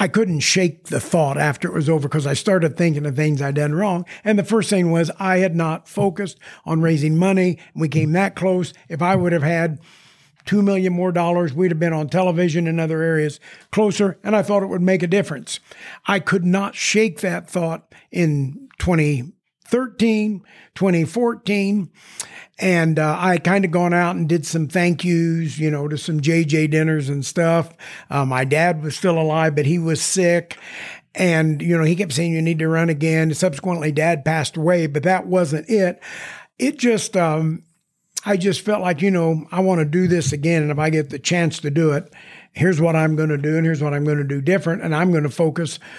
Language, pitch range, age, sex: English, 155-185 Hz, 50-69, male